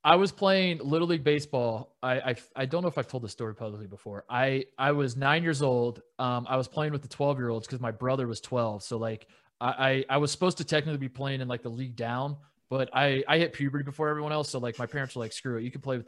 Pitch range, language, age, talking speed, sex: 125-155 Hz, English, 20-39, 275 wpm, male